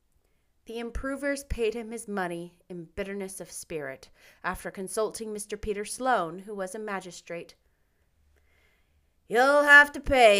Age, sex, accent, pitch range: 30-49, female, American, 185-255 Hz